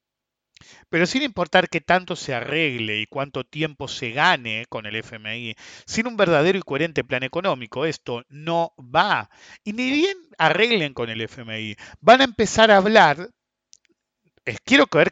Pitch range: 120-170 Hz